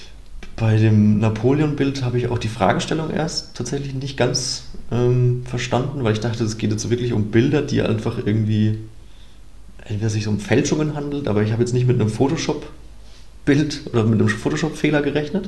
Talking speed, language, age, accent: 170 wpm, German, 30-49, German